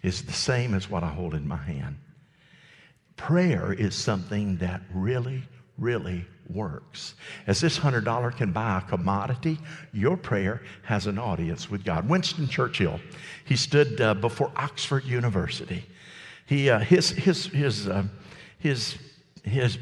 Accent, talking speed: American, 145 wpm